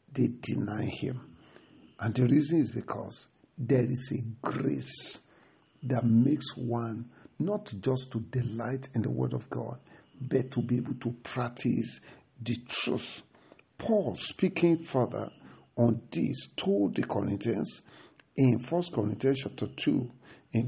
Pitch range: 120-150 Hz